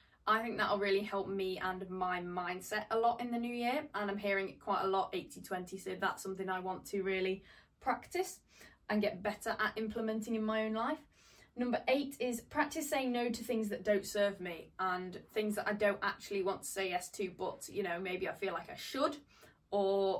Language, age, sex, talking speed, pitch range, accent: English, 20-39, female, 220 wpm, 195-225 Hz, British